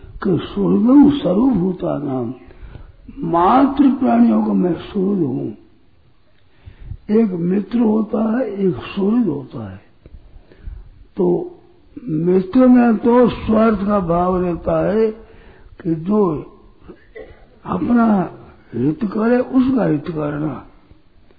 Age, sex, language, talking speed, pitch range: 60-79, male, Hindi, 100 wpm, 165-225 Hz